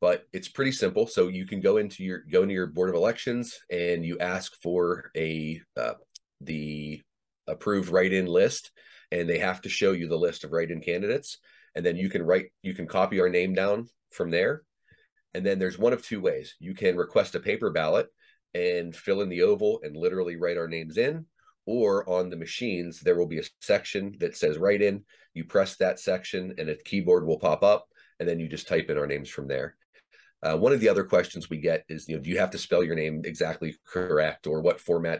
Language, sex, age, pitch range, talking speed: English, male, 30-49, 80-115 Hz, 225 wpm